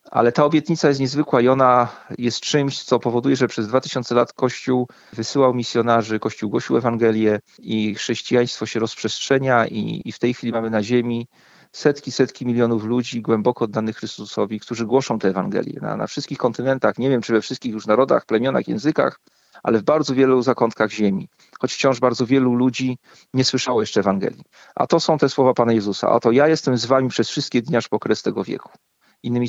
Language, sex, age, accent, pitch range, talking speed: Polish, male, 40-59, native, 115-130 Hz, 190 wpm